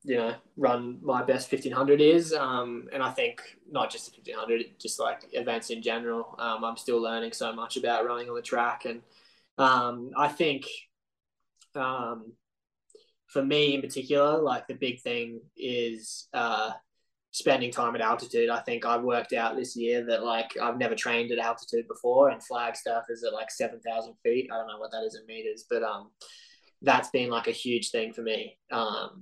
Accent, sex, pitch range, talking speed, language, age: Australian, male, 115-145 Hz, 190 wpm, English, 10-29